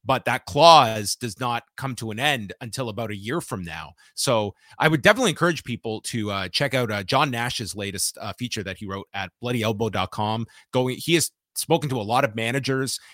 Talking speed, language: 205 wpm, English